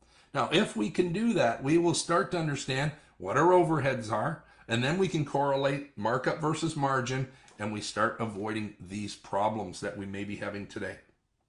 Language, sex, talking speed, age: English, male, 185 wpm, 50-69